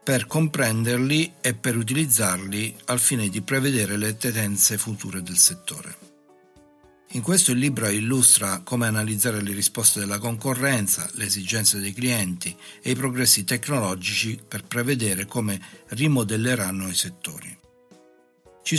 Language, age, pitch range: English, 60-79, 100-125 Hz